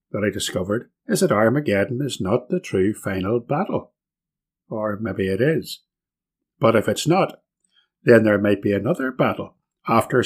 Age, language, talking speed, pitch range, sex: 60-79, English, 160 wpm, 100-135 Hz, male